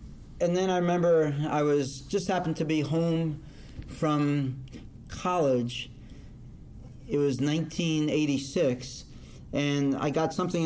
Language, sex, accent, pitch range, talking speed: English, male, American, 130-150 Hz, 115 wpm